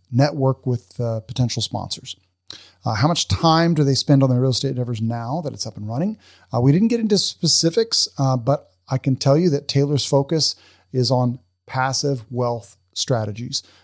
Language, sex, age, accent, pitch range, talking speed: English, male, 40-59, American, 110-140 Hz, 185 wpm